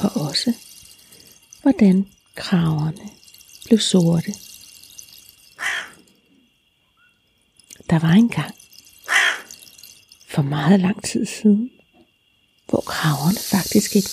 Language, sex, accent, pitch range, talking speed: Danish, female, native, 185-235 Hz, 80 wpm